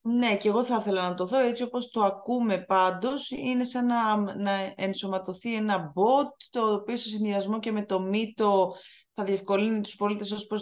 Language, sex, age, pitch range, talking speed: Greek, female, 20-39, 185-245 Hz, 190 wpm